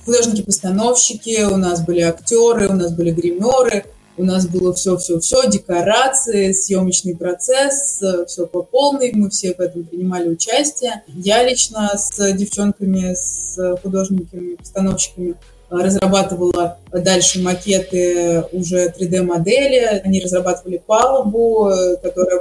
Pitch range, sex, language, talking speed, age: 180-210 Hz, female, English, 105 wpm, 20-39